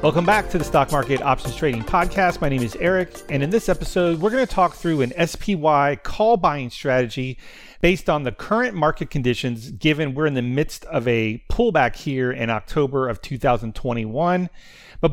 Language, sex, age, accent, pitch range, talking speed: English, male, 40-59, American, 130-170 Hz, 180 wpm